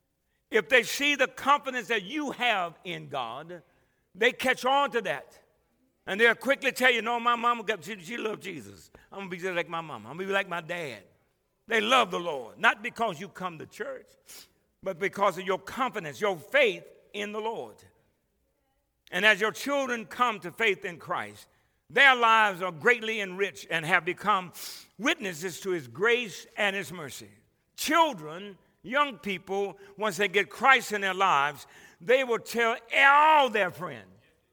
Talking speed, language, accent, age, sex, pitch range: 175 wpm, English, American, 60-79, male, 180-245 Hz